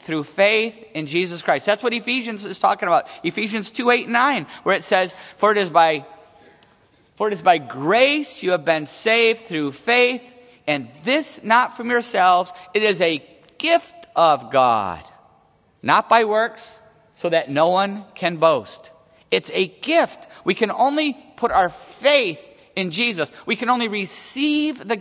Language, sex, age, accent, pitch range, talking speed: English, male, 50-69, American, 180-260 Hz, 165 wpm